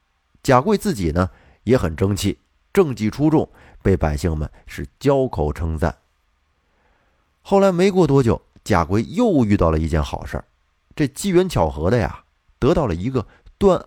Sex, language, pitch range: male, Chinese, 80-130 Hz